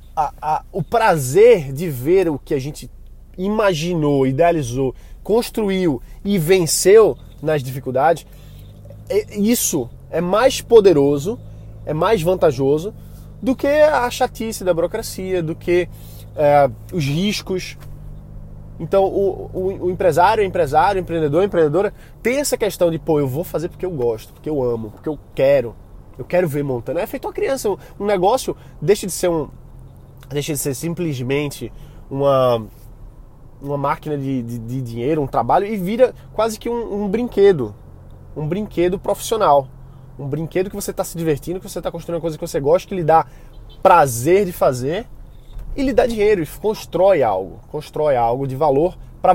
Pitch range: 135-190 Hz